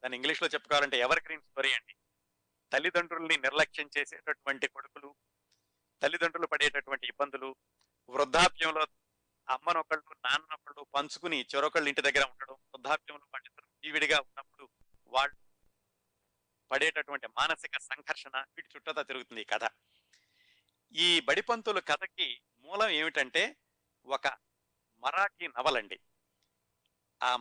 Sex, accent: male, native